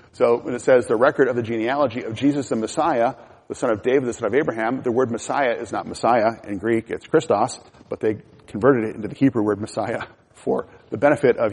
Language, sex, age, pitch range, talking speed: English, male, 40-59, 110-130 Hz, 230 wpm